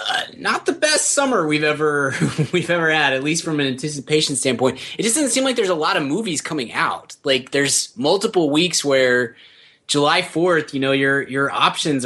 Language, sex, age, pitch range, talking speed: English, male, 20-39, 120-155 Hz, 200 wpm